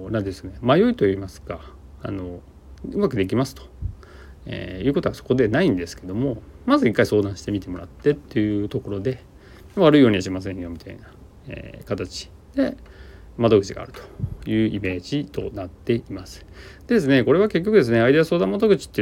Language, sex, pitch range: Japanese, male, 90-120 Hz